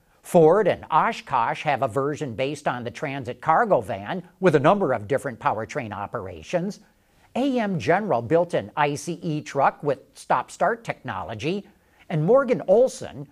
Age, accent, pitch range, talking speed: 50-69, American, 145-205 Hz, 140 wpm